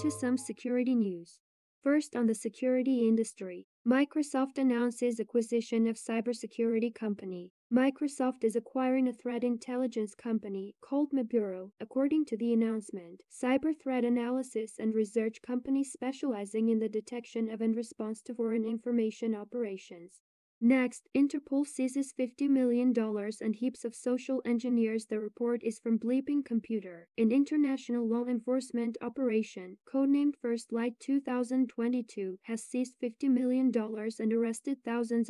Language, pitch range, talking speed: English, 225-255 Hz, 130 wpm